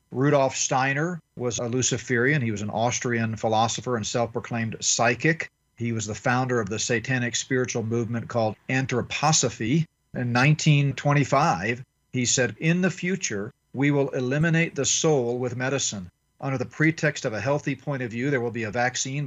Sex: male